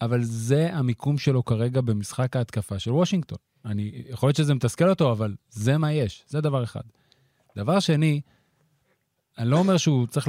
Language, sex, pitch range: Hebrew, male, 120-160 Hz